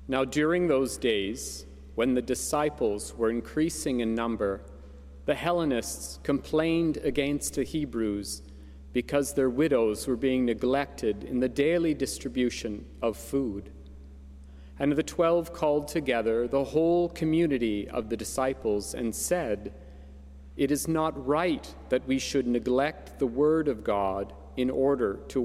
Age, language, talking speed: 40-59, English, 135 wpm